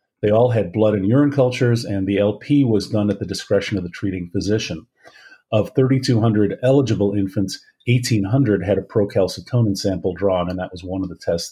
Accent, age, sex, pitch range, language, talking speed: American, 50-69, male, 100-125 Hz, English, 190 wpm